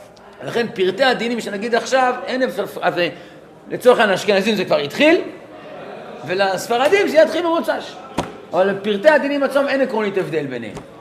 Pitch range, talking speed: 165-255 Hz, 135 wpm